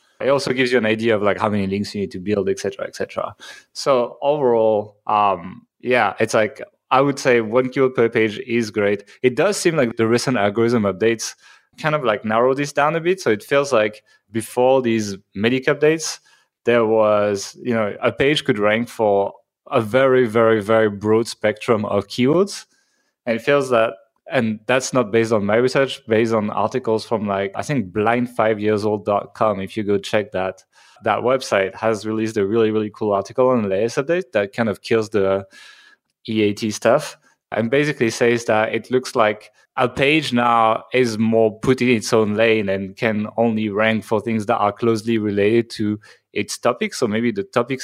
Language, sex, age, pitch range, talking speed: English, male, 20-39, 105-125 Hz, 190 wpm